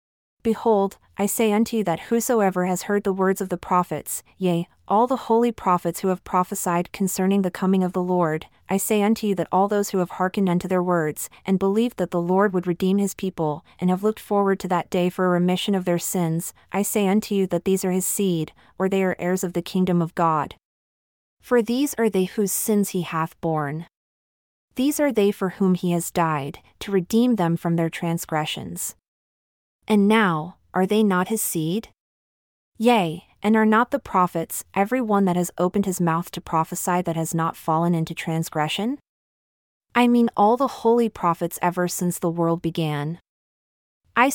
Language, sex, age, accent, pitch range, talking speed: English, female, 30-49, American, 170-205 Hz, 195 wpm